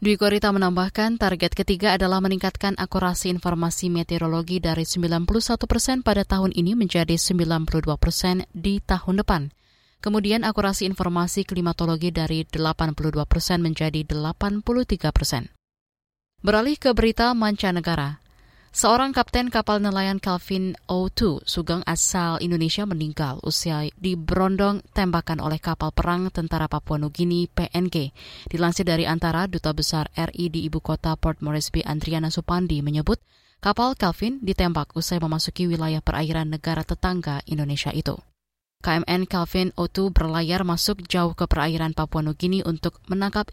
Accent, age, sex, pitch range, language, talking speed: native, 20-39, female, 160-195 Hz, Indonesian, 130 wpm